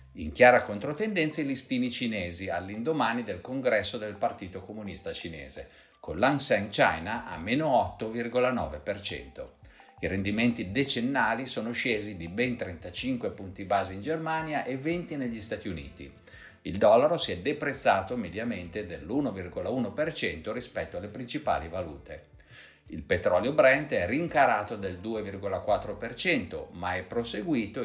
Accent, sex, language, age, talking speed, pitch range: native, male, Italian, 50-69, 125 wpm, 95-135 Hz